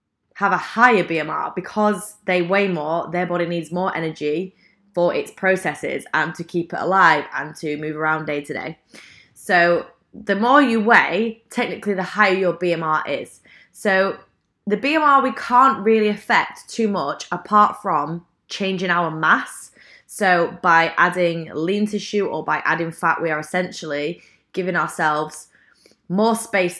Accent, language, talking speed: British, English, 155 wpm